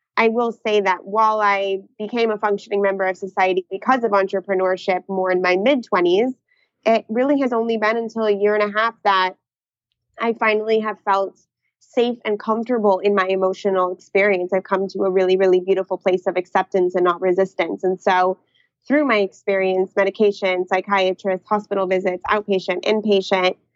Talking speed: 165 wpm